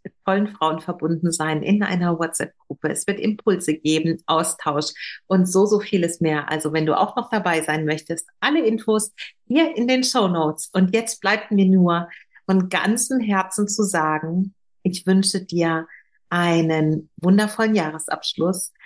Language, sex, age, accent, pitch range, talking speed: German, female, 50-69, German, 160-200 Hz, 155 wpm